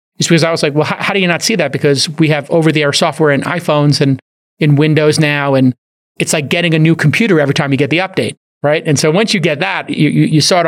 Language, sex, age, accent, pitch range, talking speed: English, male, 30-49, American, 140-170 Hz, 285 wpm